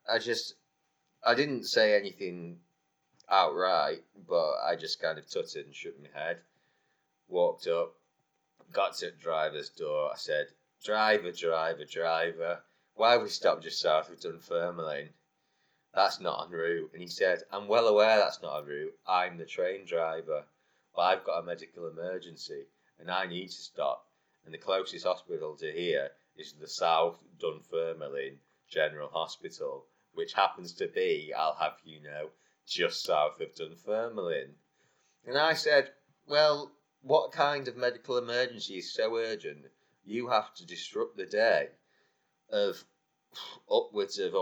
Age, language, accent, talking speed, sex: 30-49, English, British, 150 wpm, male